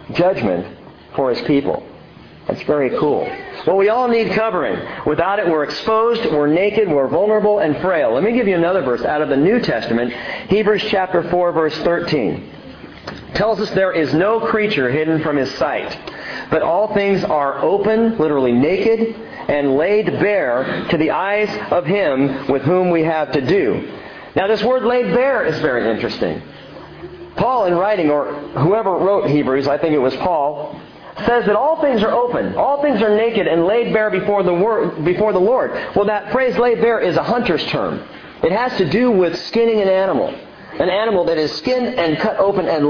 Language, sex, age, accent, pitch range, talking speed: English, male, 40-59, American, 155-225 Hz, 185 wpm